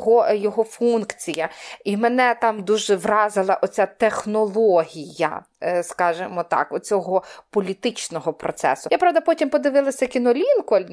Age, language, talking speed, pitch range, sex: 30-49, Ukrainian, 105 wpm, 185-245 Hz, female